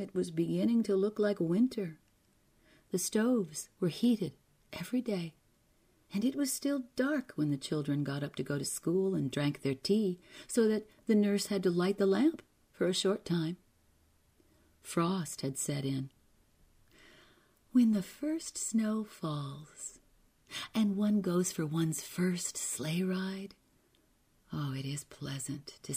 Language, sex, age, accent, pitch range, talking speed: English, female, 40-59, American, 145-205 Hz, 150 wpm